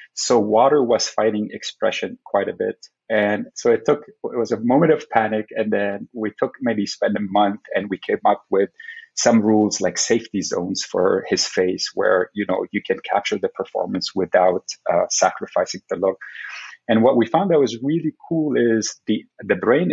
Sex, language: male, English